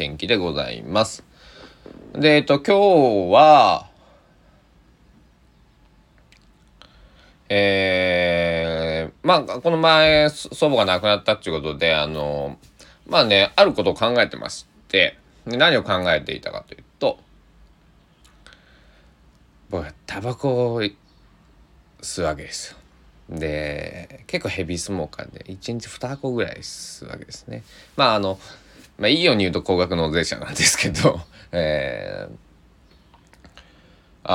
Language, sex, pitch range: Japanese, male, 80-105 Hz